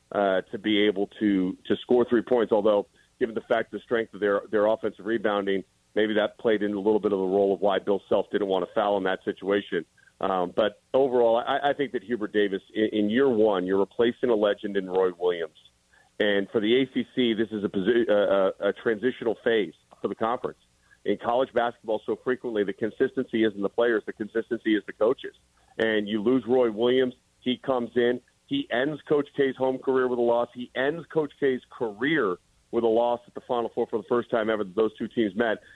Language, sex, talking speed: English, male, 220 wpm